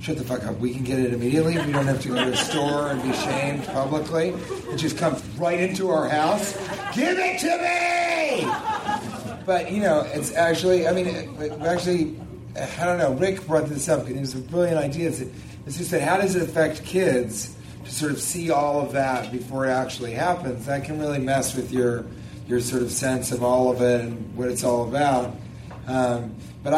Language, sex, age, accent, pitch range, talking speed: English, male, 30-49, American, 120-160 Hz, 210 wpm